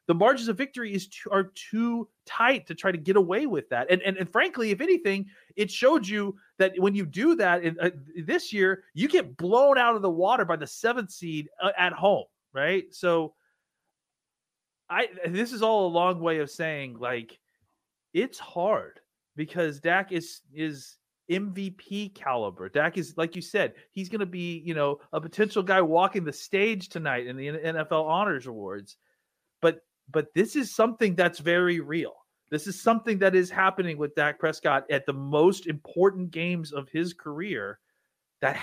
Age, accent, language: 30-49, American, English